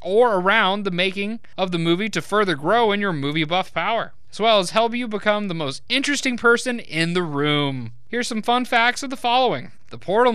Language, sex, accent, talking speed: English, male, American, 215 wpm